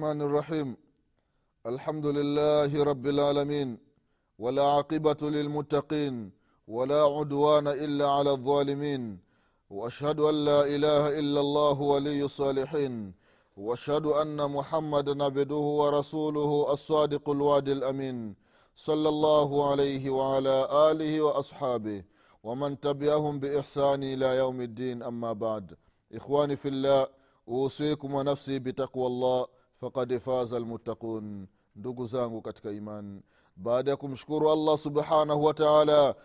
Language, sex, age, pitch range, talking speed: Swahili, male, 30-49, 120-145 Hz, 105 wpm